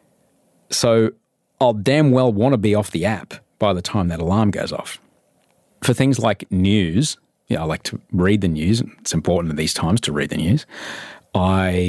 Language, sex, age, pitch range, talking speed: English, male, 30-49, 90-125 Hz, 195 wpm